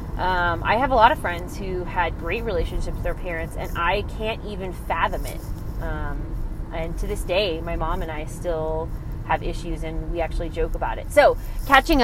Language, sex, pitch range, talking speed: English, female, 170-210 Hz, 200 wpm